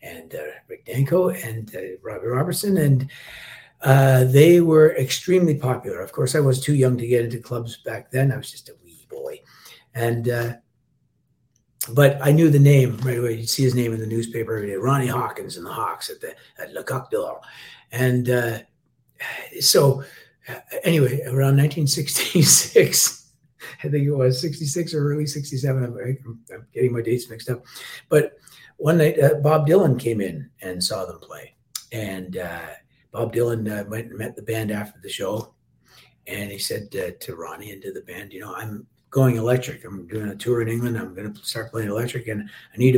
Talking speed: 195 wpm